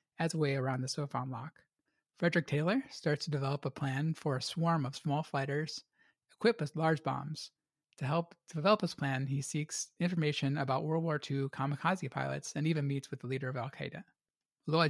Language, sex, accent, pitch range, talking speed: English, male, American, 135-160 Hz, 190 wpm